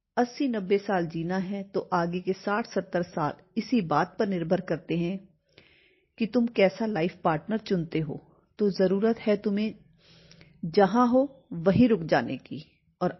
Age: 40-59